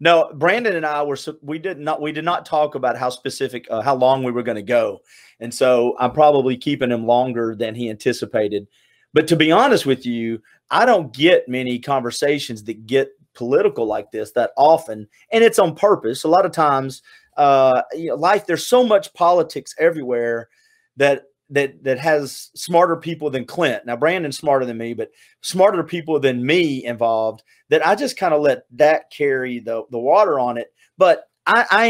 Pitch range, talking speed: 125-160 Hz, 195 wpm